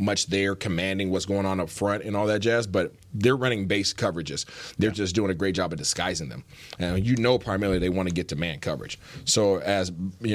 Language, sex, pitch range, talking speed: English, male, 100-130 Hz, 230 wpm